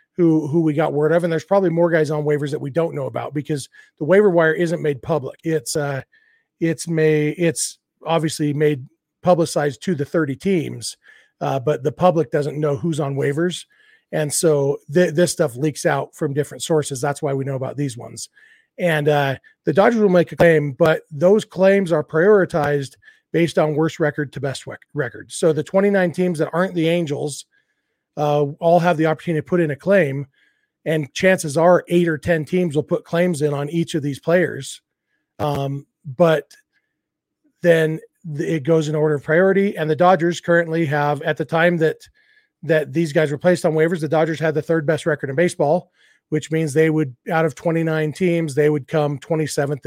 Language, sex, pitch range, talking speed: English, male, 150-175 Hz, 195 wpm